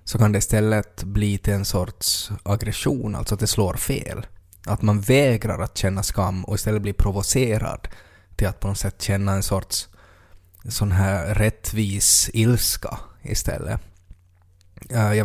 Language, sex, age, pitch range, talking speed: Swedish, male, 20-39, 95-110 Hz, 155 wpm